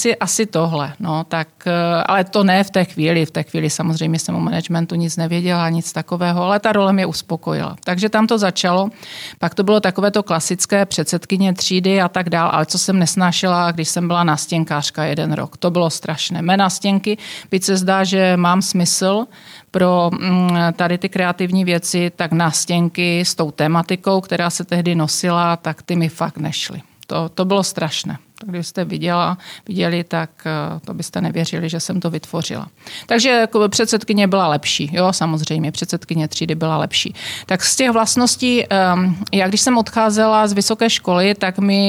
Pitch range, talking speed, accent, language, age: 170-200 Hz, 170 wpm, native, Czech, 40-59